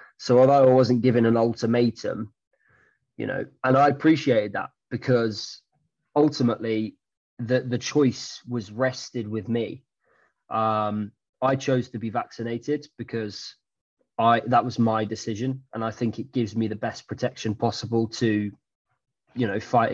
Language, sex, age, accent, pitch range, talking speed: English, male, 20-39, British, 115-135 Hz, 145 wpm